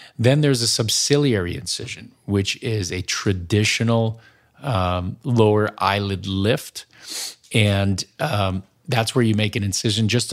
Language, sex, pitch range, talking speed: English, male, 105-120 Hz, 130 wpm